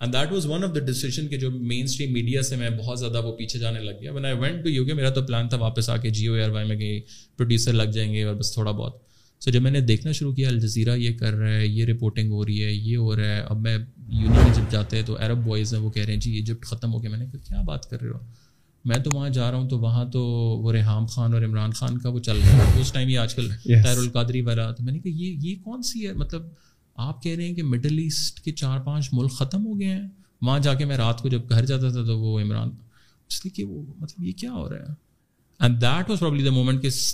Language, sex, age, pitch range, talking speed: Urdu, male, 20-39, 115-135 Hz, 205 wpm